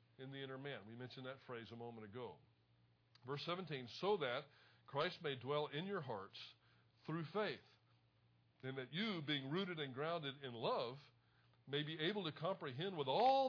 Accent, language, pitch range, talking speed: American, English, 120-155 Hz, 175 wpm